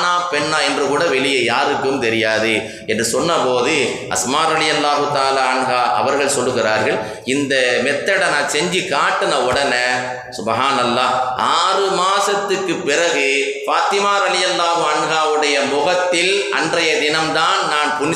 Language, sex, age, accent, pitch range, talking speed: Tamil, male, 30-49, native, 115-160 Hz, 45 wpm